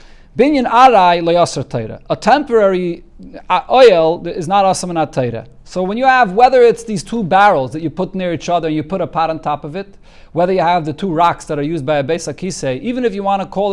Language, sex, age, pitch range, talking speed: English, male, 40-59, 150-200 Hz, 220 wpm